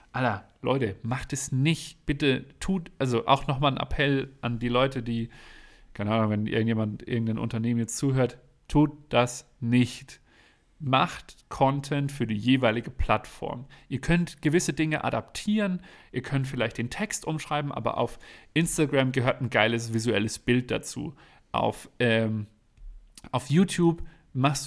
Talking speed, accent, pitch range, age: 140 wpm, German, 120-150 Hz, 40-59